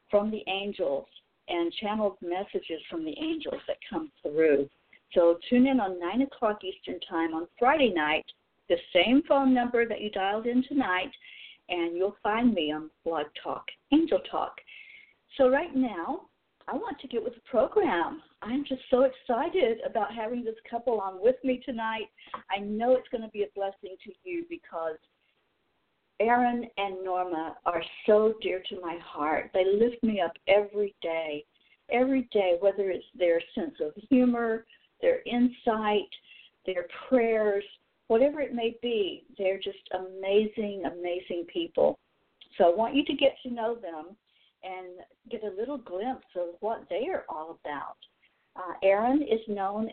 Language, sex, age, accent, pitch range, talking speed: English, female, 60-79, American, 185-260 Hz, 160 wpm